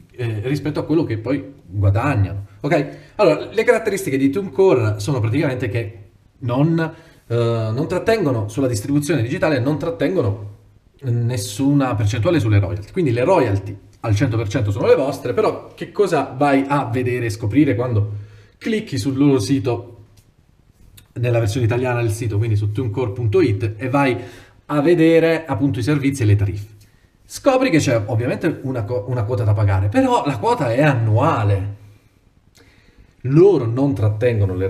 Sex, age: male, 30-49